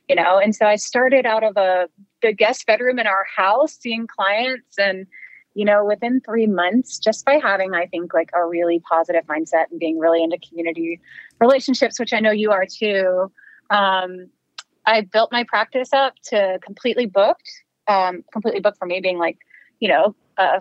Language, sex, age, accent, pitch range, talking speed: English, female, 30-49, American, 175-220 Hz, 185 wpm